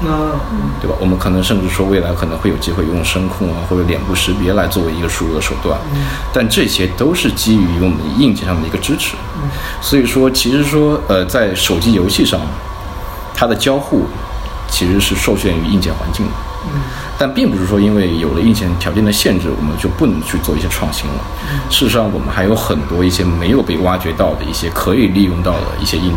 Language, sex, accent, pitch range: Chinese, male, native, 85-100 Hz